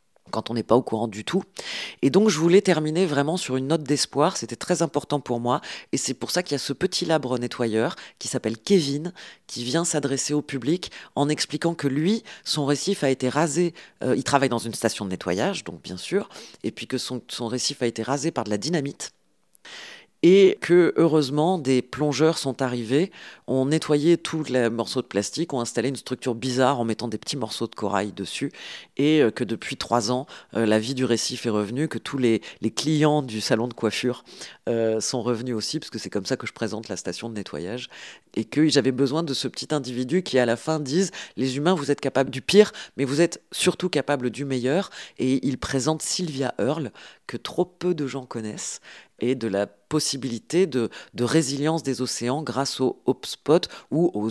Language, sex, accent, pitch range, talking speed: French, female, French, 115-150 Hz, 210 wpm